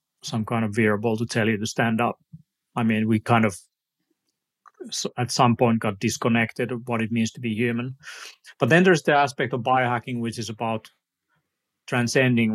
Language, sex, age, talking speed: English, male, 30-49, 180 wpm